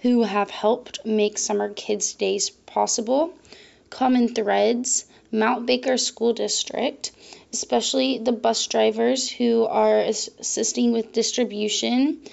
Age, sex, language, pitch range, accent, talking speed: 20-39, female, English, 215-255 Hz, American, 110 wpm